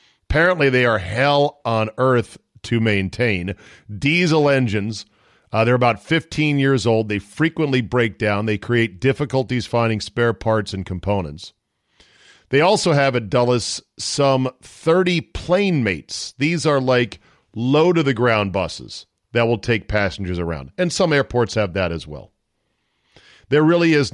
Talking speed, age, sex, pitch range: 150 wpm, 40-59, male, 105-145 Hz